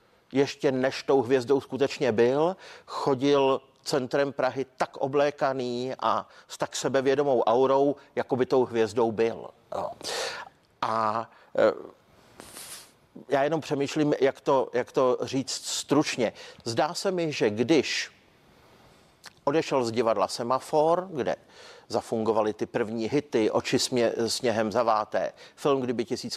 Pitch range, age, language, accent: 125-160 Hz, 50-69, Czech, native